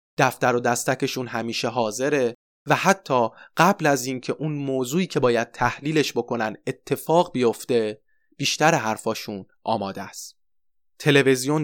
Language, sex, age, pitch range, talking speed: Persian, male, 30-49, 120-145 Hz, 120 wpm